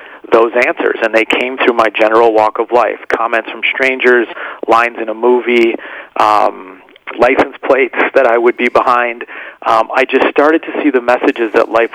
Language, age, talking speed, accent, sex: English, 40-59, 180 wpm, American, male